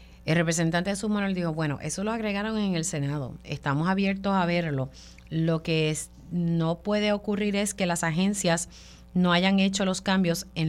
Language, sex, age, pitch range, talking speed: Spanish, female, 30-49, 155-195 Hz, 180 wpm